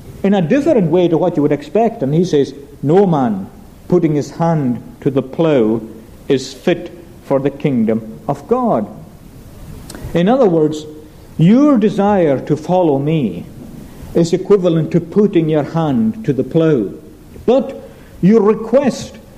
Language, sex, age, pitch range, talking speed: English, male, 60-79, 155-215 Hz, 145 wpm